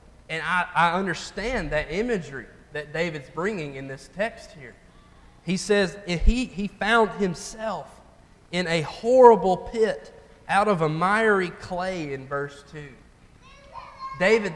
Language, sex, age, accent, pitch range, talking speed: English, male, 20-39, American, 155-205 Hz, 130 wpm